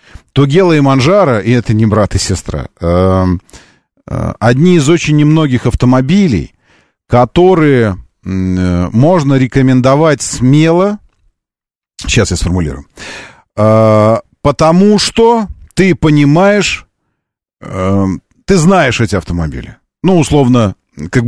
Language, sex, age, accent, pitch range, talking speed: Russian, male, 40-59, native, 100-150 Hz, 105 wpm